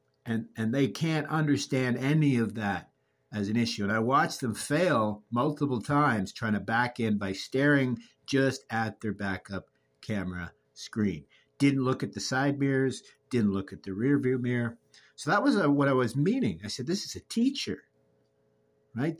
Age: 50-69